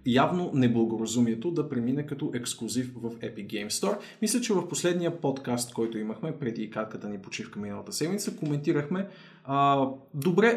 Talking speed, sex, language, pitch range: 155 wpm, male, Bulgarian, 120-175 Hz